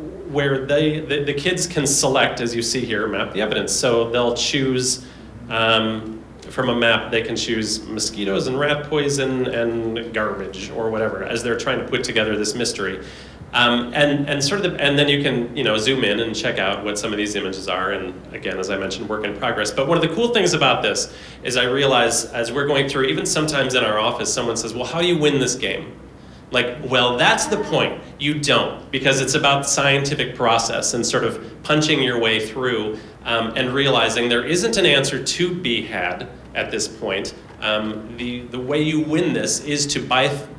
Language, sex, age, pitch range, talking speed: English, male, 30-49, 115-145 Hz, 210 wpm